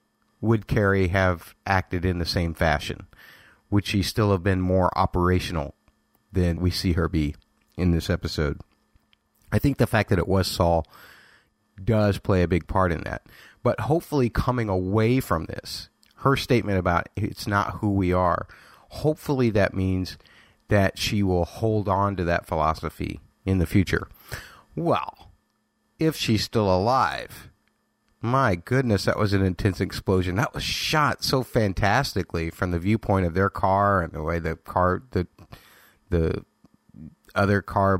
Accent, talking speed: American, 155 wpm